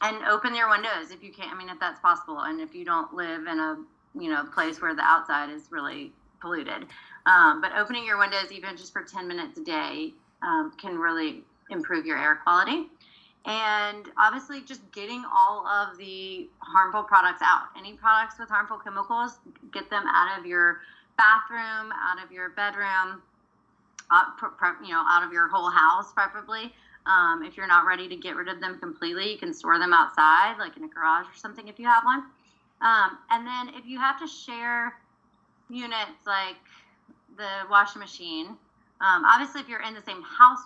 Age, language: 30-49, English